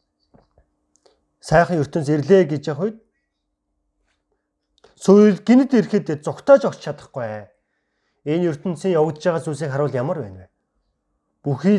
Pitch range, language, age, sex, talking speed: 115-180 Hz, English, 40-59, male, 110 wpm